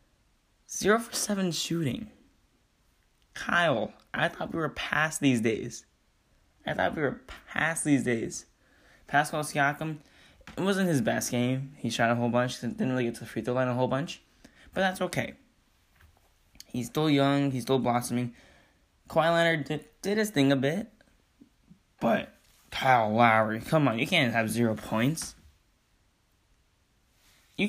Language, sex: English, male